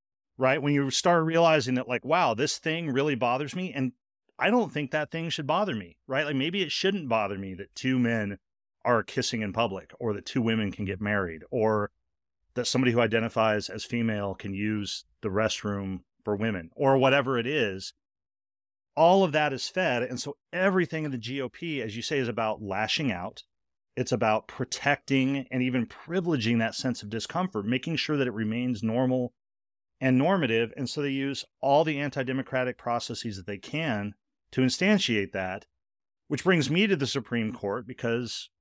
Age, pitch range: 30-49, 110-140 Hz